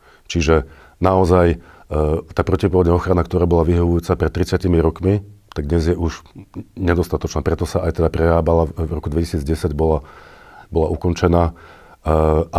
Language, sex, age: Slovak, male, 50-69